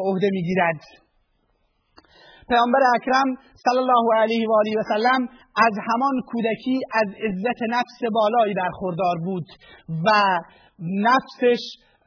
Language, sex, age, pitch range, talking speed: Persian, male, 30-49, 200-235 Hz, 120 wpm